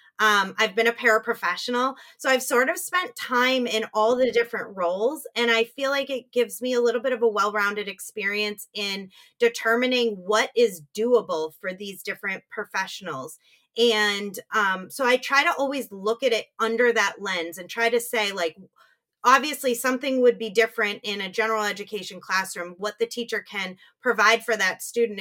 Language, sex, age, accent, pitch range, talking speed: English, female, 30-49, American, 190-235 Hz, 180 wpm